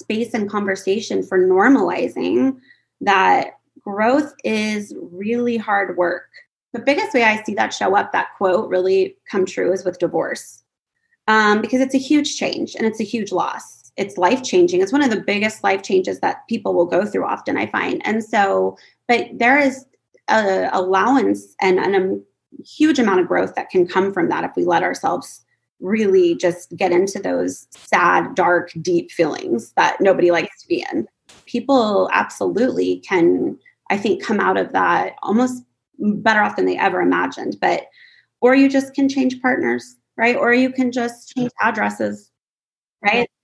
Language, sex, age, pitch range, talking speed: English, female, 20-39, 185-260 Hz, 170 wpm